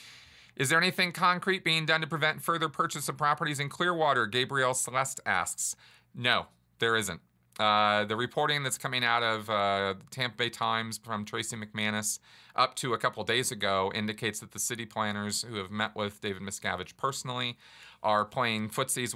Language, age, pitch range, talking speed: English, 40-59, 95-130 Hz, 175 wpm